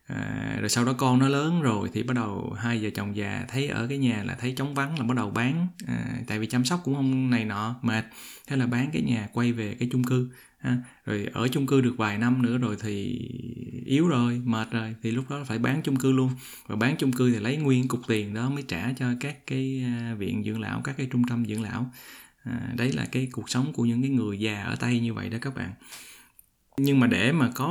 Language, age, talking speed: Vietnamese, 20-39, 245 wpm